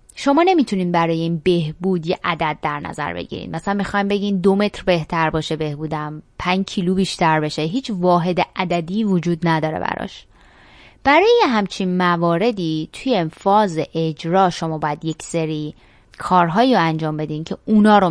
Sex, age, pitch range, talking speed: female, 20-39, 165-215 Hz, 150 wpm